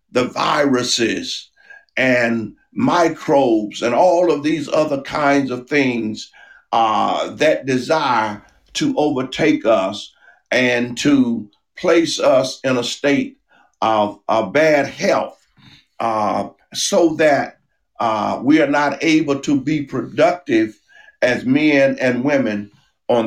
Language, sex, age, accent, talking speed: English, male, 50-69, American, 115 wpm